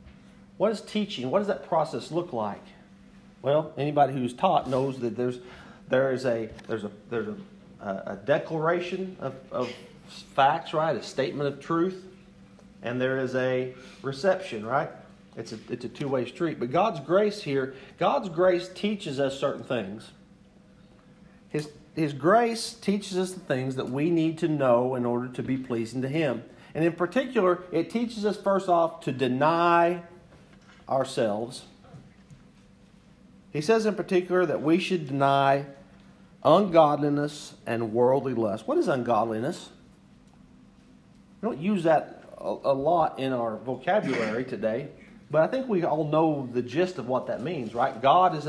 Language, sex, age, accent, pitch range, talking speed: English, male, 40-59, American, 130-180 Hz, 155 wpm